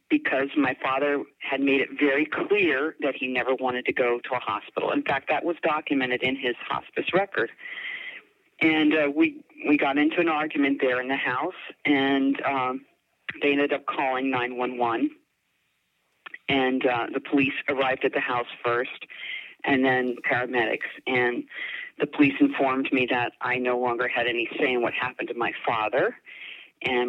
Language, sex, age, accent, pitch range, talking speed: English, female, 40-59, American, 125-160 Hz, 170 wpm